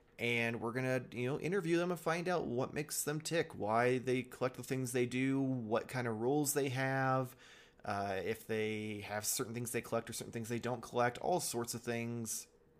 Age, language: 20-39, English